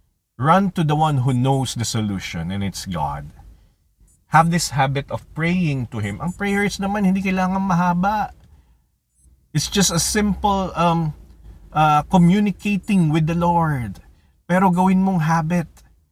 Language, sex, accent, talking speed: English, male, Filipino, 140 wpm